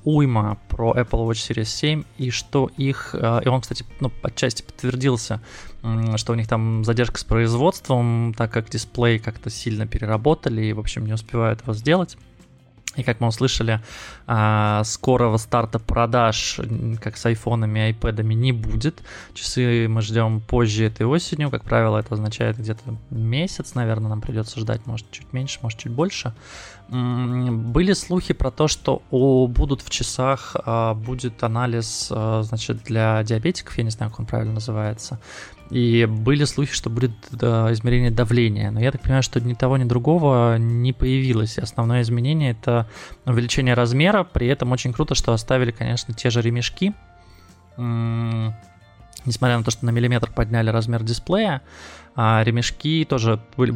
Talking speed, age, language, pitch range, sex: 150 wpm, 20-39, Russian, 110-125 Hz, male